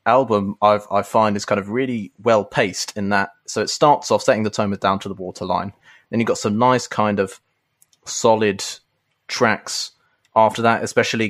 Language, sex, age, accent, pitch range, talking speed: English, male, 20-39, British, 100-115 Hz, 180 wpm